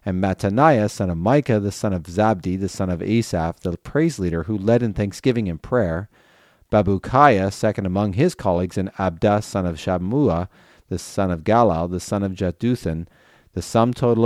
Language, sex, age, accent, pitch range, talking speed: English, male, 40-59, American, 90-115 Hz, 180 wpm